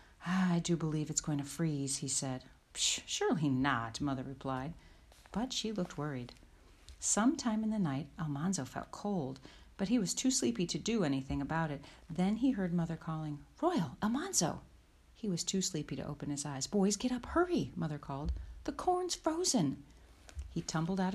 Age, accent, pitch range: 40-59, American, 145-195 Hz